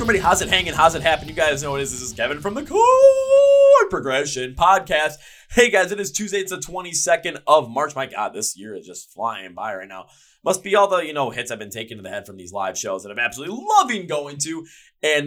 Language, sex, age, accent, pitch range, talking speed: English, male, 20-39, American, 135-190 Hz, 255 wpm